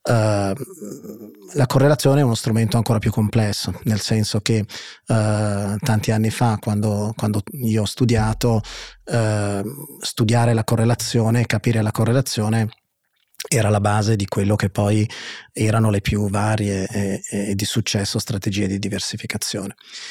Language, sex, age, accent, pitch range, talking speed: Italian, male, 30-49, native, 105-115 Hz, 135 wpm